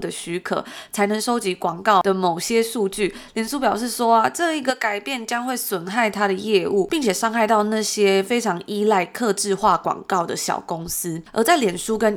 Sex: female